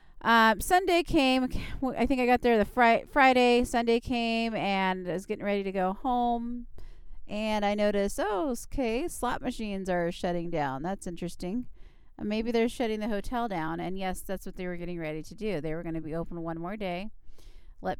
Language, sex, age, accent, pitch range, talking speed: English, female, 30-49, American, 175-230 Hz, 195 wpm